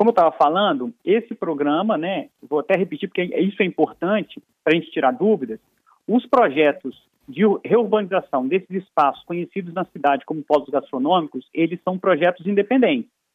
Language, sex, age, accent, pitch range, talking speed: Portuguese, male, 40-59, Brazilian, 170-230 Hz, 155 wpm